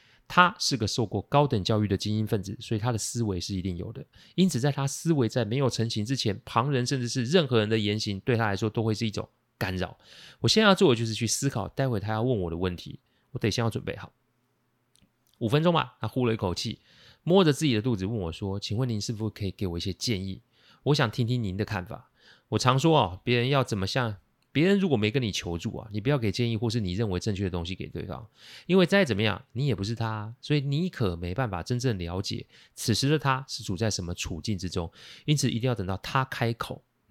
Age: 30-49